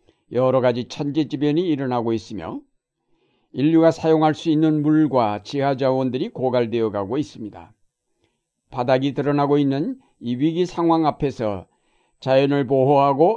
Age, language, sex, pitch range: 60-79, Korean, male, 125-150 Hz